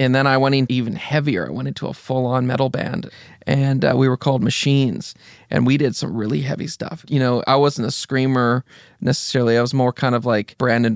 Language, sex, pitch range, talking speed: English, male, 125-150 Hz, 225 wpm